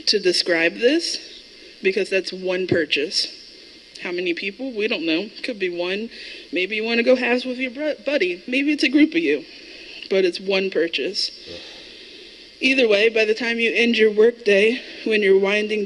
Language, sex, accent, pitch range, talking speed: English, female, American, 195-300 Hz, 180 wpm